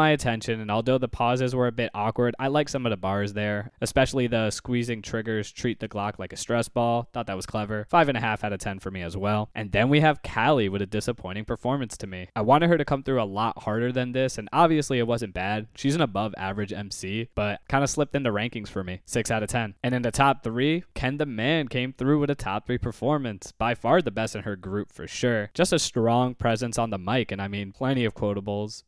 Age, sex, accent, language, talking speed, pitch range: 10-29, male, American, English, 260 wpm, 105-130 Hz